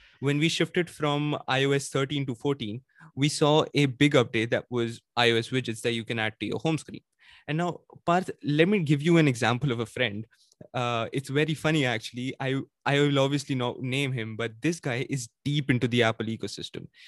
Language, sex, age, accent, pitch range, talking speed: English, male, 20-39, Indian, 115-140 Hz, 205 wpm